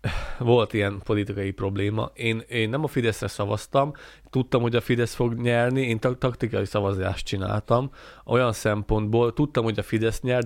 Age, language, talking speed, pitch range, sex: 30-49, Hungarian, 155 wpm, 110-140 Hz, male